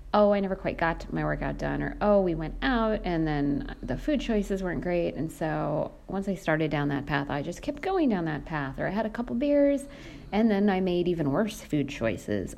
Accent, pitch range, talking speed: American, 145-215 Hz, 235 wpm